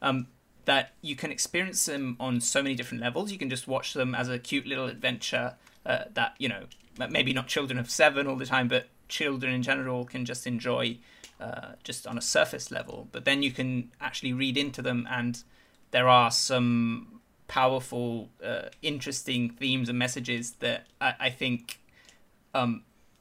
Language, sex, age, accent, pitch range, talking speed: English, male, 20-39, British, 125-140 Hz, 180 wpm